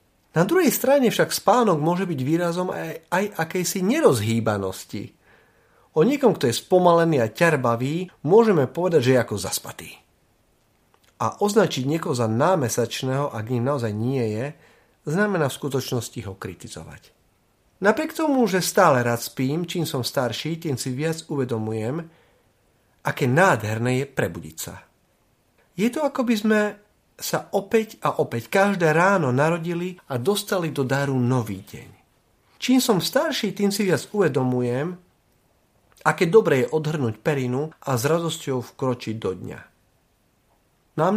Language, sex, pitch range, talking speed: Slovak, male, 125-185 Hz, 135 wpm